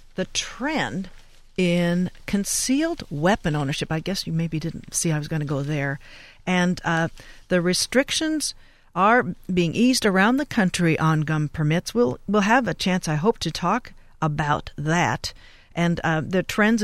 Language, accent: English, American